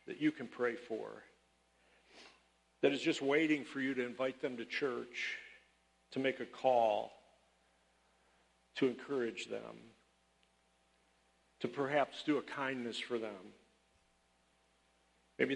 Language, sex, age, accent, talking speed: English, male, 50-69, American, 120 wpm